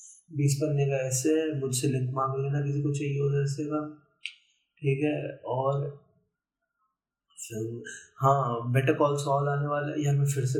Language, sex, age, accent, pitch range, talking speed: Hindi, male, 20-39, native, 130-155 Hz, 155 wpm